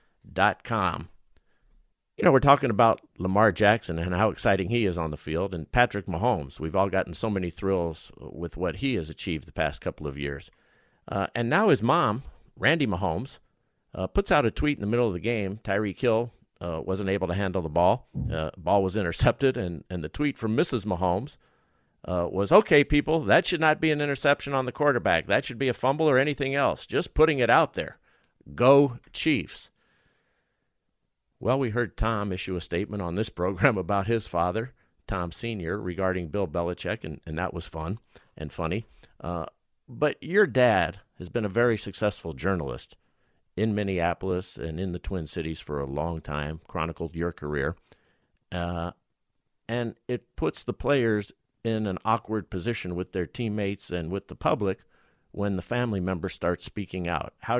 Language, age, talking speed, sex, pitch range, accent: English, 50-69, 185 wpm, male, 90-120 Hz, American